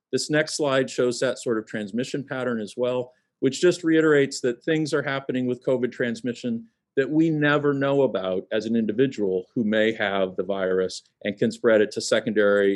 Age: 50-69